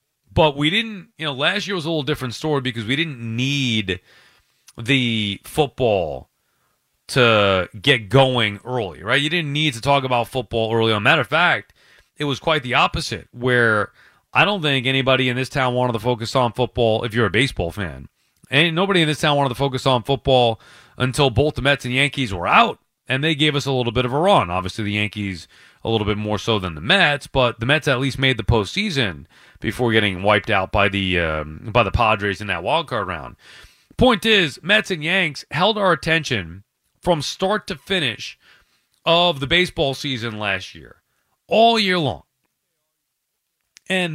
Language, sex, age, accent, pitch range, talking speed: English, male, 30-49, American, 115-160 Hz, 195 wpm